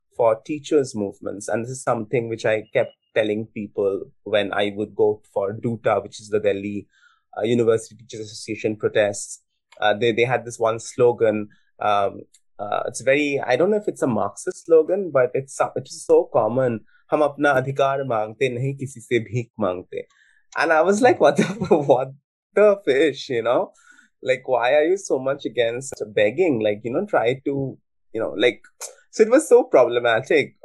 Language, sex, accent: English, male, Indian